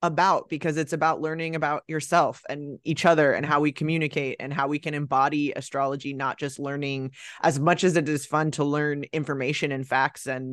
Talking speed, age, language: 200 wpm, 20-39, English